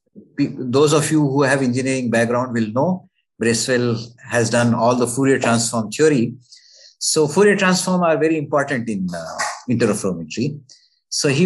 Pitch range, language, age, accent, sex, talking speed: 120-165 Hz, English, 50-69, Indian, male, 145 wpm